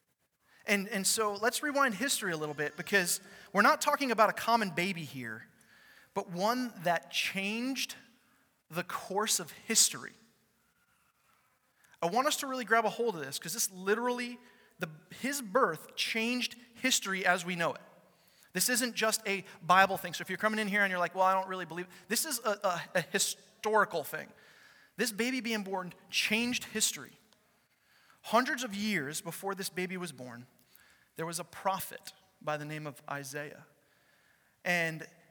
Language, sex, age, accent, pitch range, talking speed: English, male, 30-49, American, 155-215 Hz, 170 wpm